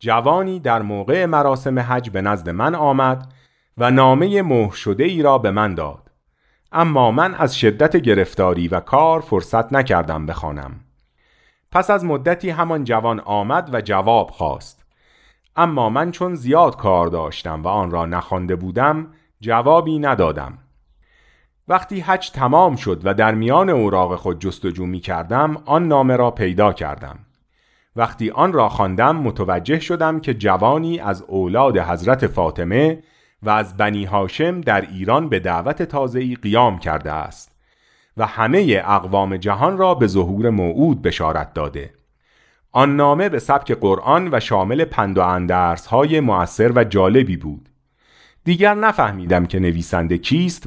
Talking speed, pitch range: 140 wpm, 95-150 Hz